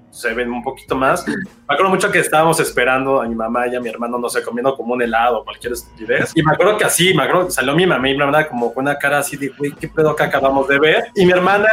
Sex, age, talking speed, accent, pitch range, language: male, 30-49, 285 wpm, Mexican, 135-180 Hz, Spanish